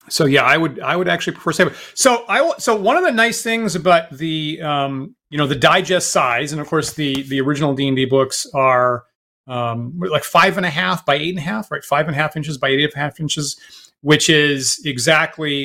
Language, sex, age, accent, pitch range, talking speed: English, male, 30-49, American, 140-175 Hz, 225 wpm